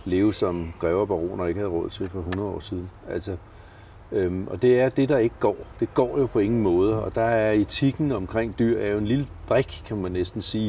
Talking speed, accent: 235 wpm, native